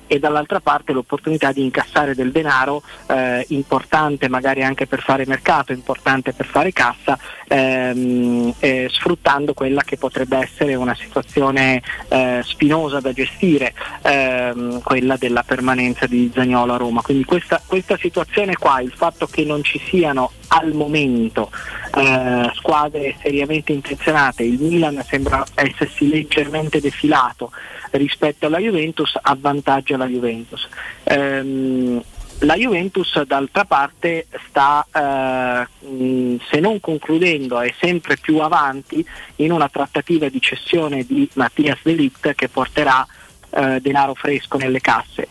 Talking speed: 130 wpm